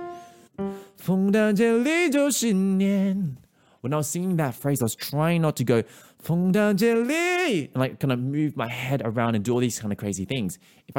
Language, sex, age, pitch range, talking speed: English, male, 20-39, 95-140 Hz, 160 wpm